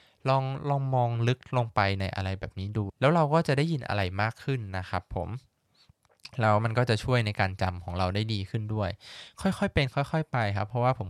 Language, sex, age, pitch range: Thai, male, 20-39, 100-130 Hz